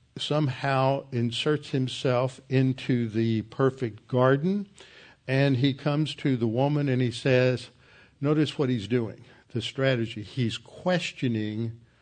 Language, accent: English, American